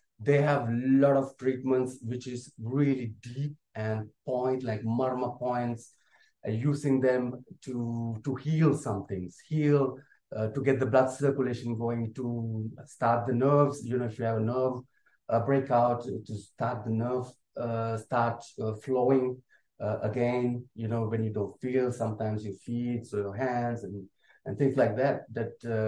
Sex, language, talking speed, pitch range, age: male, English, 165 wpm, 110-135 Hz, 30-49